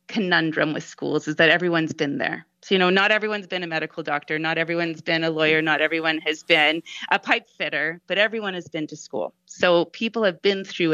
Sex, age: female, 30-49